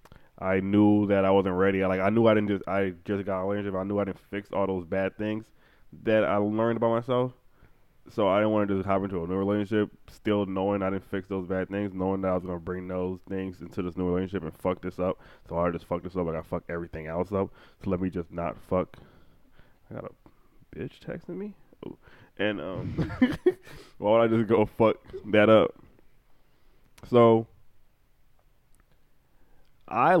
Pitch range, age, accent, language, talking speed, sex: 90-115 Hz, 20-39, American, English, 205 wpm, male